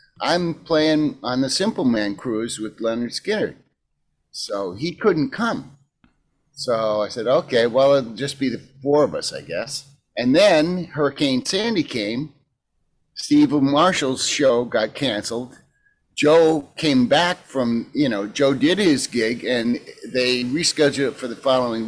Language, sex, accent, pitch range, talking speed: English, male, American, 110-150 Hz, 150 wpm